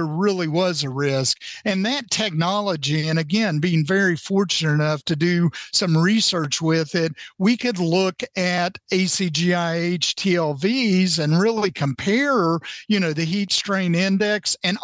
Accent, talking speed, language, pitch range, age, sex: American, 140 wpm, English, 160-205 Hz, 50-69, male